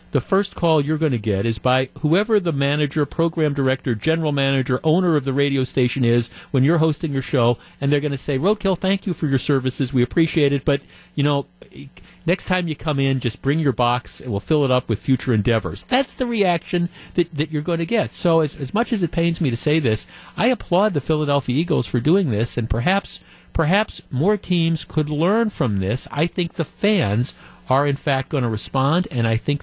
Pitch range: 120-160 Hz